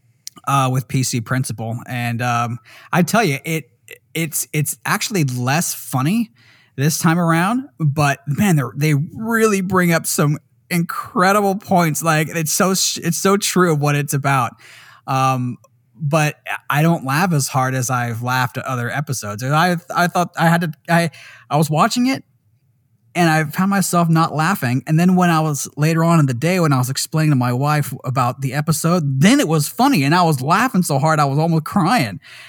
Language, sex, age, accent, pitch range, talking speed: English, male, 20-39, American, 125-170 Hz, 190 wpm